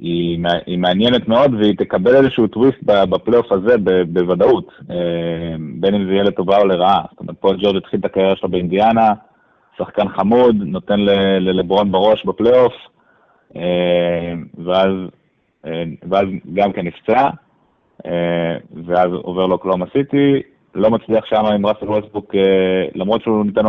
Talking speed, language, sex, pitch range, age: 135 wpm, Hebrew, male, 90-105 Hz, 20-39